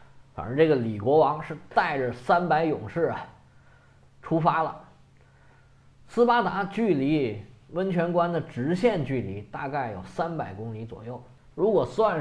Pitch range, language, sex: 125-170 Hz, Chinese, male